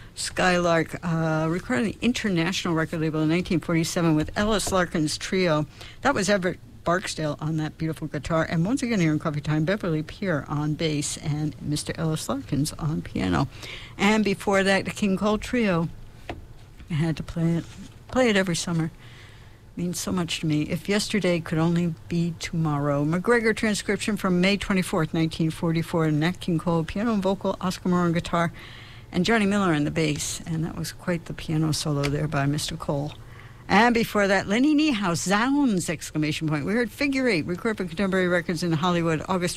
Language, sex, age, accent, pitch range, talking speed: English, female, 60-79, American, 155-195 Hz, 175 wpm